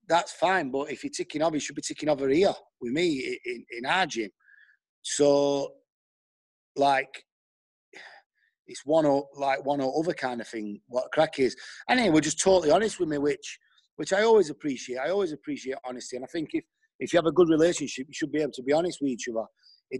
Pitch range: 130-175 Hz